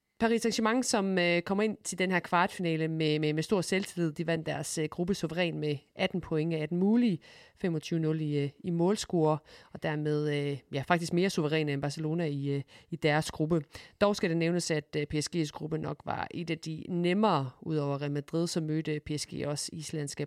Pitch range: 150-180 Hz